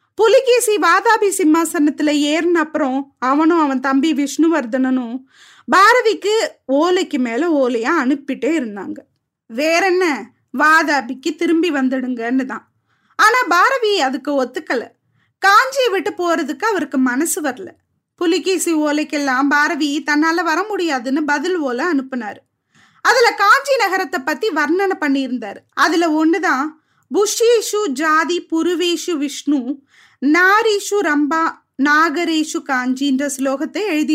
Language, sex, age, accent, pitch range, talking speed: Tamil, female, 20-39, native, 280-370 Hz, 100 wpm